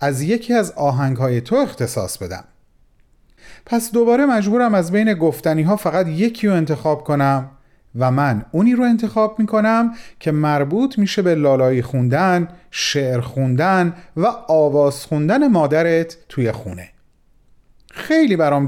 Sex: male